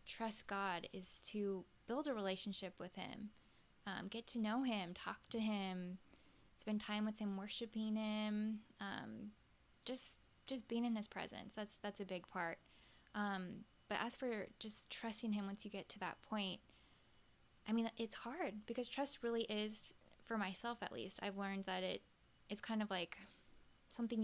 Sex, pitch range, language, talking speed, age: female, 190-220 Hz, English, 170 wpm, 10-29